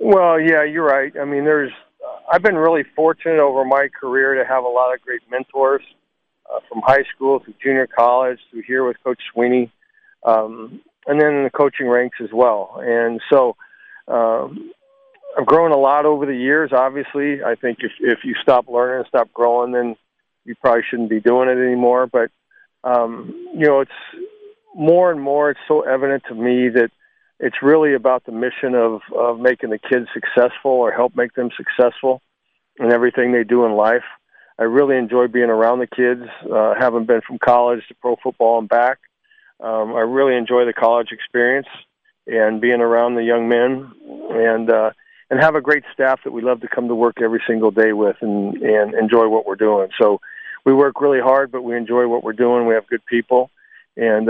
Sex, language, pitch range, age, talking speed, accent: male, English, 120-145 Hz, 50-69, 200 wpm, American